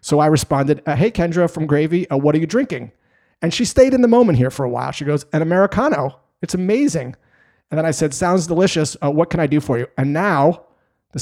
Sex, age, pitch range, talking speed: male, 30-49, 125-155 Hz, 240 wpm